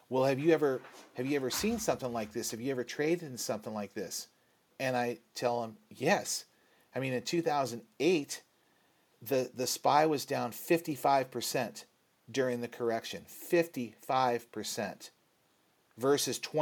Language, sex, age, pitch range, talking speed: English, male, 40-59, 120-140 Hz, 140 wpm